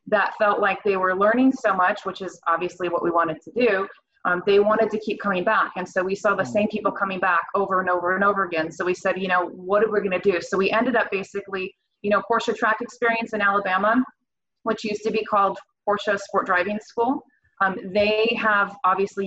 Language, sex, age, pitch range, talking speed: English, female, 20-39, 185-210 Hz, 230 wpm